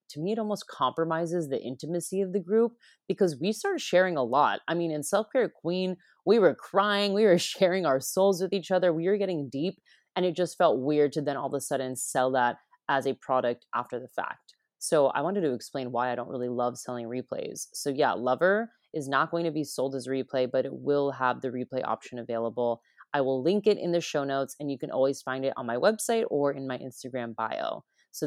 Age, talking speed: 20-39, 235 wpm